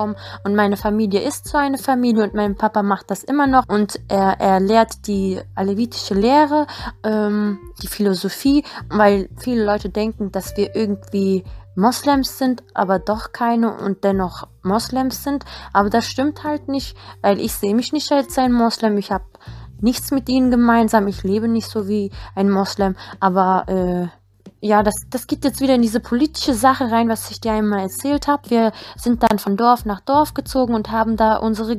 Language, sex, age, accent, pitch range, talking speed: German, female, 20-39, German, 195-240 Hz, 185 wpm